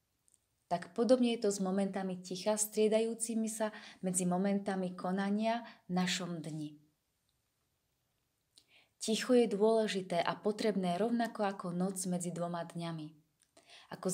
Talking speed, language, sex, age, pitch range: 115 wpm, Slovak, female, 20-39, 170-205 Hz